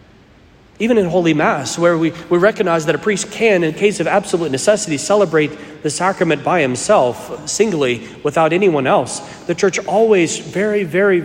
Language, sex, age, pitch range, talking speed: English, male, 40-59, 130-175 Hz, 165 wpm